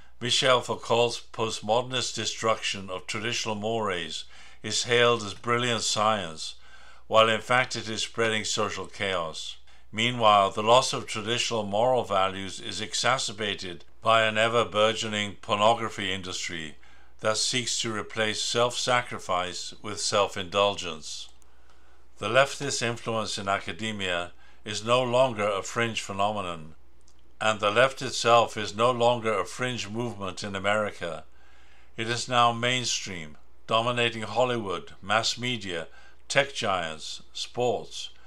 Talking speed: 120 wpm